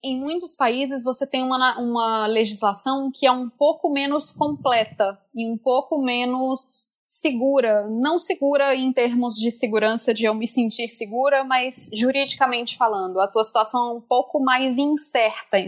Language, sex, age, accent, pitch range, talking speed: Portuguese, female, 20-39, Brazilian, 220-270 Hz, 155 wpm